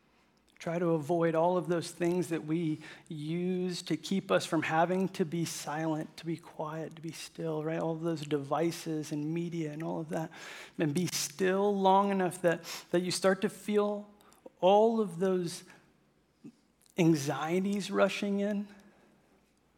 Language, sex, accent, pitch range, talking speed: English, male, American, 155-185 Hz, 160 wpm